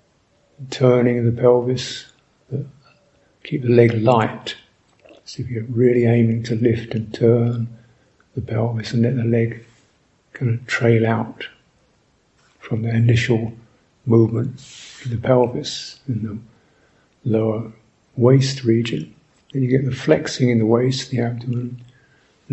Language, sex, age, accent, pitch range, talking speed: English, male, 50-69, British, 115-130 Hz, 135 wpm